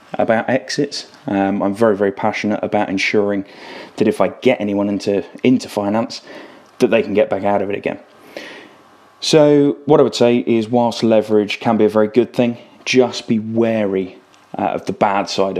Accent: British